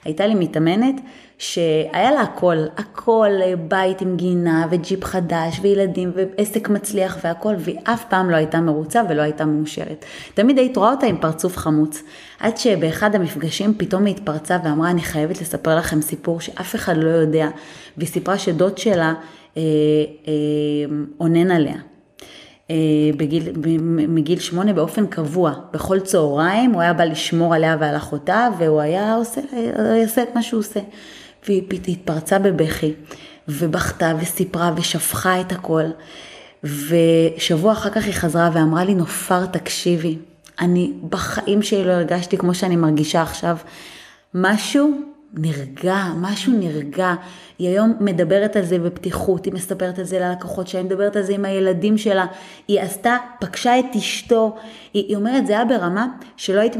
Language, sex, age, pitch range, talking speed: Hebrew, female, 20-39, 165-210 Hz, 145 wpm